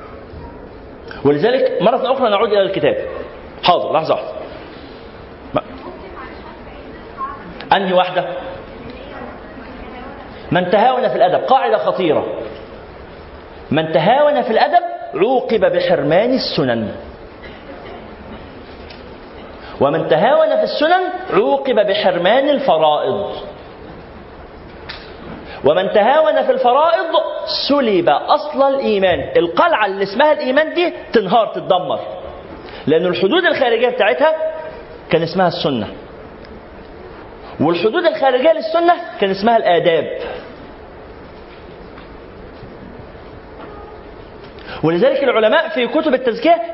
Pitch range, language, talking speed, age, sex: 200-330 Hz, Arabic, 80 wpm, 50-69, male